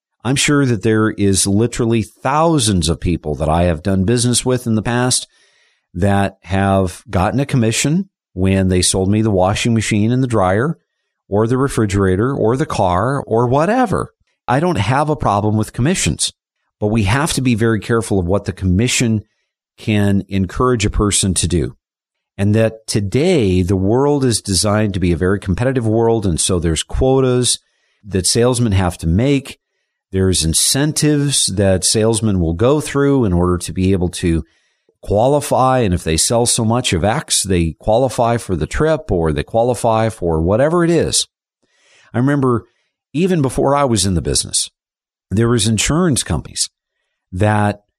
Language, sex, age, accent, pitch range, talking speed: English, male, 50-69, American, 90-125 Hz, 170 wpm